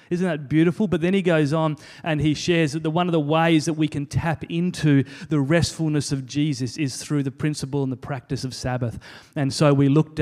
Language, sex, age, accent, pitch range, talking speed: English, male, 30-49, Australian, 135-155 Hz, 230 wpm